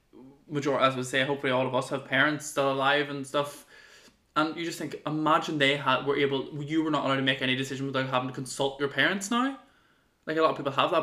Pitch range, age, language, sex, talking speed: 135-165 Hz, 20-39, English, male, 245 wpm